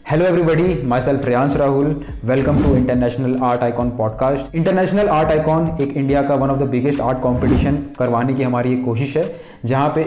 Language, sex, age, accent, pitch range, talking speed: Hindi, male, 20-39, native, 130-160 Hz, 190 wpm